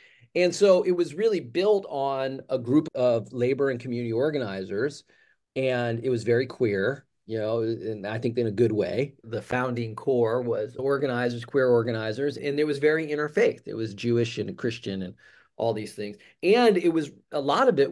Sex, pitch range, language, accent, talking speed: male, 120-160 Hz, English, American, 190 wpm